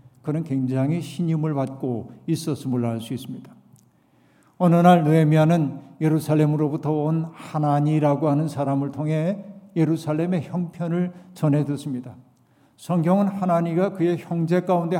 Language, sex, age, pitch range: Korean, male, 50-69, 135-165 Hz